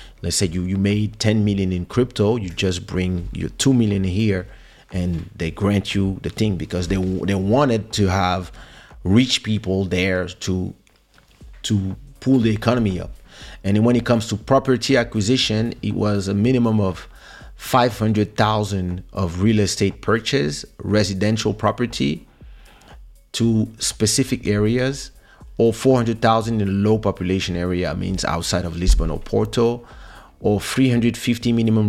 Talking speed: 145 wpm